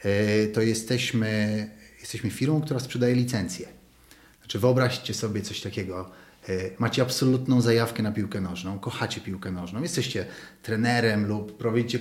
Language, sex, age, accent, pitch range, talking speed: Polish, male, 30-49, native, 110-130 Hz, 120 wpm